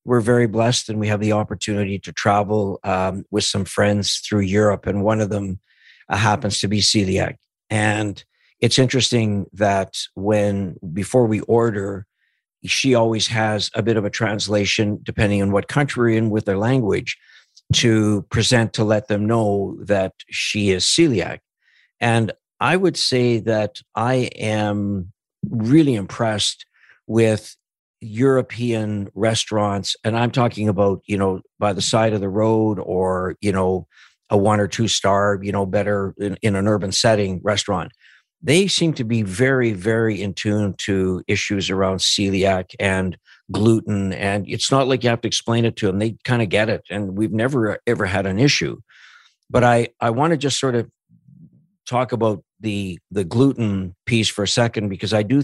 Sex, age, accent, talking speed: male, 60-79, American, 170 wpm